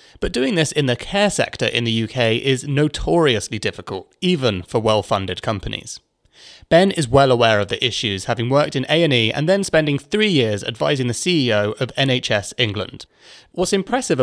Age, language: 30-49, English